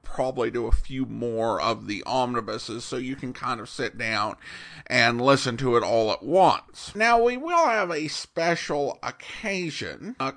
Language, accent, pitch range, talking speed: English, American, 125-195 Hz, 175 wpm